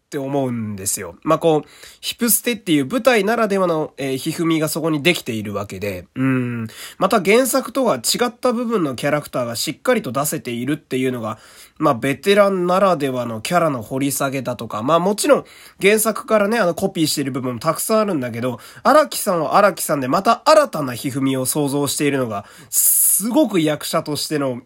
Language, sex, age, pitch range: Japanese, male, 20-39, 130-200 Hz